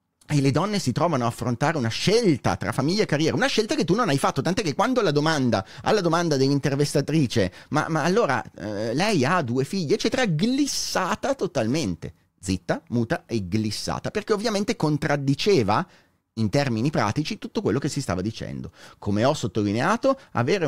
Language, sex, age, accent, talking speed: Italian, male, 30-49, native, 170 wpm